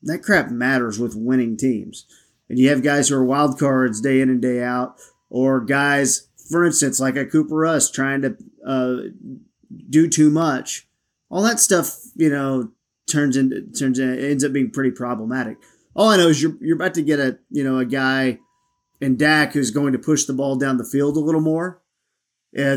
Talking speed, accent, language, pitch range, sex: 200 wpm, American, English, 130-160 Hz, male